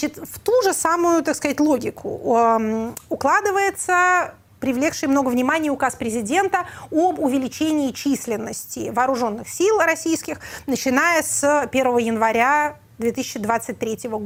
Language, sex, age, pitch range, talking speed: Russian, female, 30-49, 240-300 Hz, 100 wpm